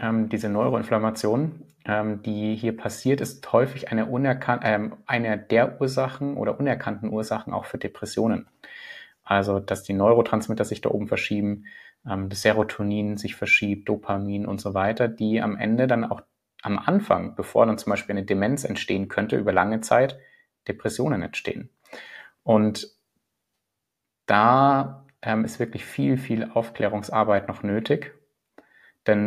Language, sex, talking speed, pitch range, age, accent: German, male, 135 wpm, 105-120 Hz, 30-49, German